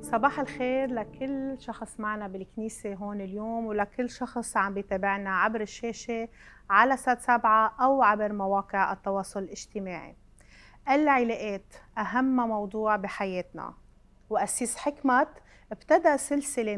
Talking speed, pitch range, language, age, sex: 105 wpm, 195-240 Hz, Arabic, 30-49, female